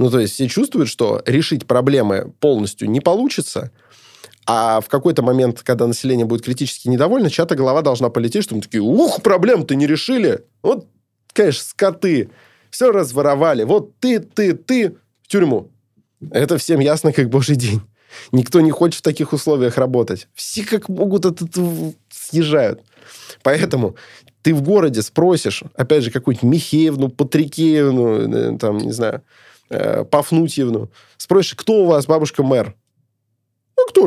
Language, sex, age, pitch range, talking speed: Russian, male, 20-39, 120-165 Hz, 145 wpm